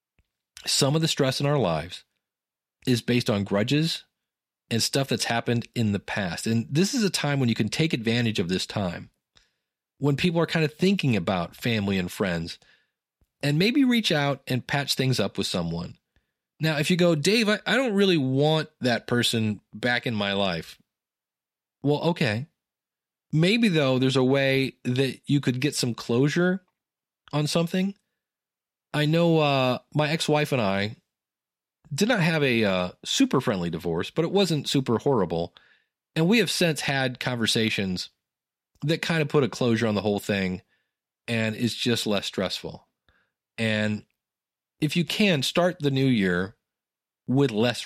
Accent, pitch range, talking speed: American, 110-160 Hz, 165 wpm